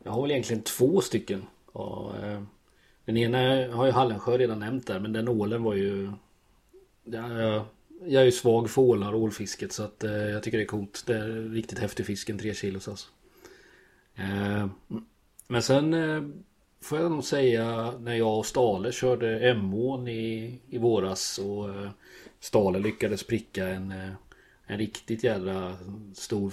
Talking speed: 150 wpm